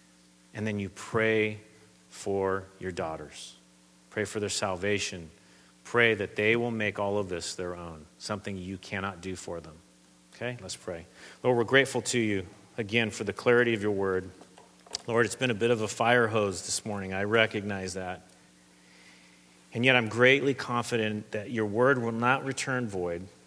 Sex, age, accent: male, 40-59, American